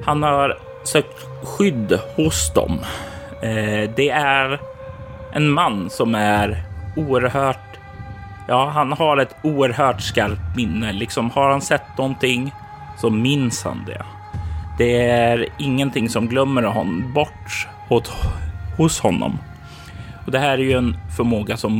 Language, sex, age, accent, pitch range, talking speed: Swedish, male, 30-49, native, 100-125 Hz, 125 wpm